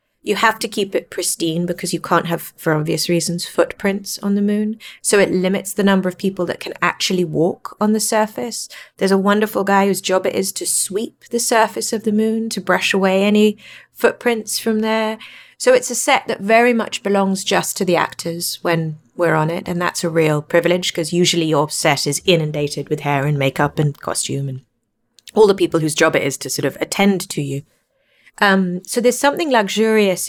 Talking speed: 210 wpm